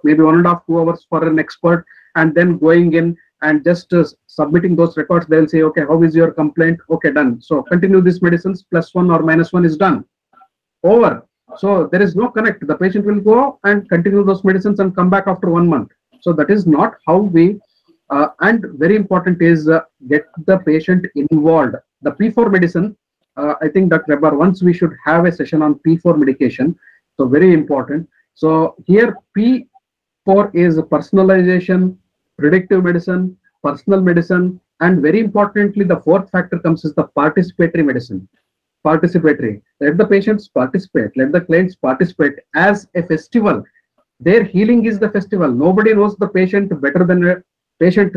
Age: 50-69